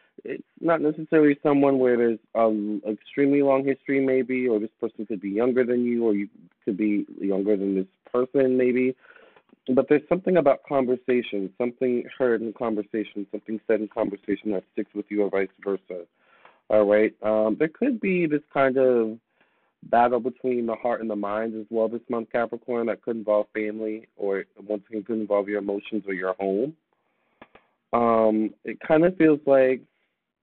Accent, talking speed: American, 175 wpm